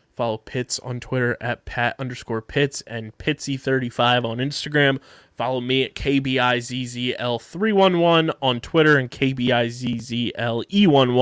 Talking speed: 105 wpm